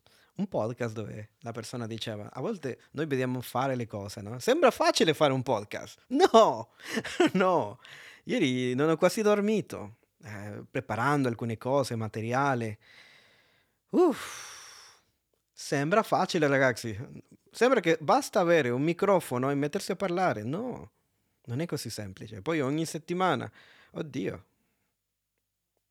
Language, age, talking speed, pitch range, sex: Italian, 30-49, 125 wpm, 120-180 Hz, male